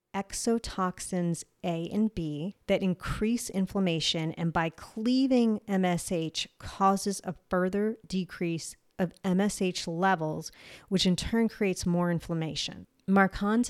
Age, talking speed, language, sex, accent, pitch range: 40-59, 110 wpm, English, female, American, 165-205 Hz